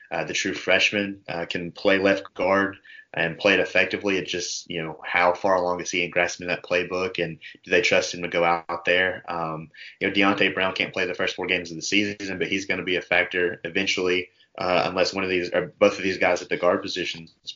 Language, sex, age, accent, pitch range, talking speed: English, male, 20-39, American, 85-95 Hz, 245 wpm